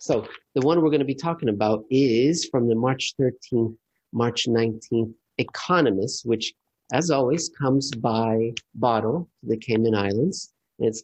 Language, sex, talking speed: English, male, 145 wpm